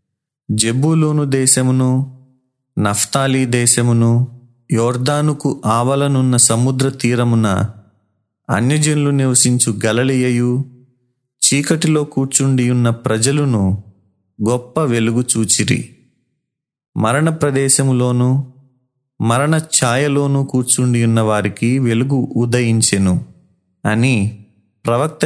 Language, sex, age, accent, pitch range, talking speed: Telugu, male, 30-49, native, 110-135 Hz, 65 wpm